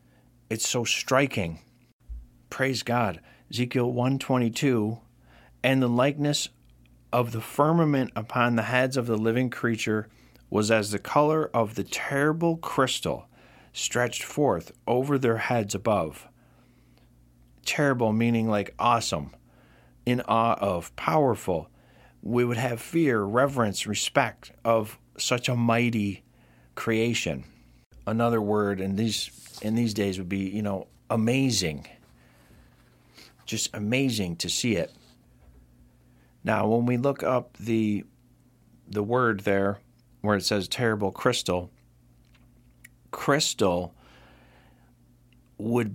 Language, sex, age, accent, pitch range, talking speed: English, male, 40-59, American, 100-120 Hz, 110 wpm